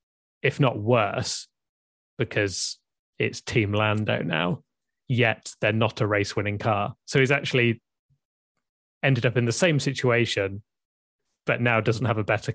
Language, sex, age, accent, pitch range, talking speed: English, male, 20-39, British, 105-125 Hz, 140 wpm